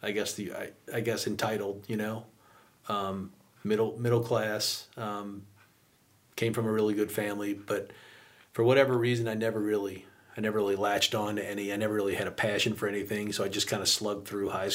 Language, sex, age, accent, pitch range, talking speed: English, male, 40-59, American, 100-115 Hz, 205 wpm